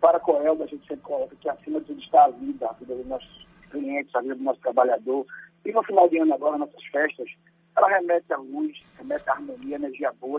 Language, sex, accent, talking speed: Portuguese, male, Brazilian, 245 wpm